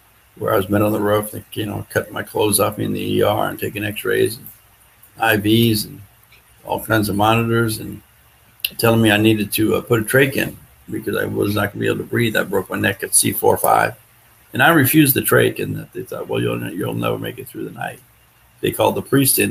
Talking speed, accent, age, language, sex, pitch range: 235 wpm, American, 50-69, English, male, 105-125 Hz